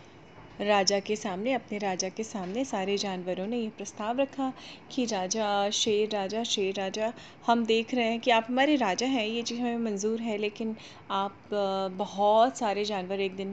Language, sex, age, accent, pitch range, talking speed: Hindi, female, 30-49, native, 195-230 Hz, 180 wpm